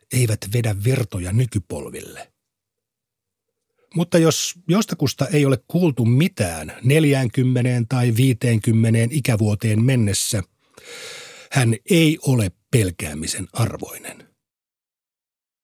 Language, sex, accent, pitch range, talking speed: Finnish, male, native, 105-145 Hz, 80 wpm